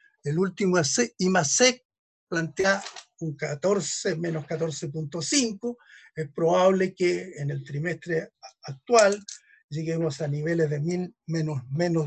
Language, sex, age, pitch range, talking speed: Spanish, male, 50-69, 155-220 Hz, 105 wpm